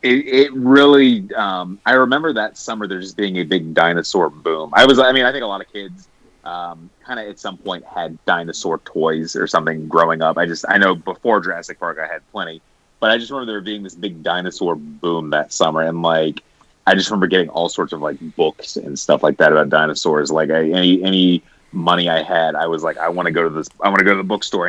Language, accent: English, American